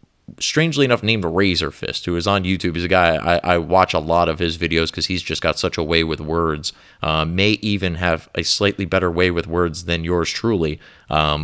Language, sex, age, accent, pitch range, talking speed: English, male, 30-49, American, 85-105 Hz, 225 wpm